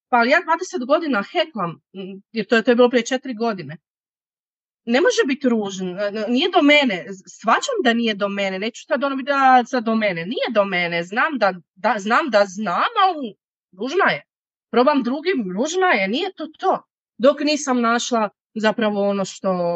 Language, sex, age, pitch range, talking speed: Croatian, female, 30-49, 205-270 Hz, 175 wpm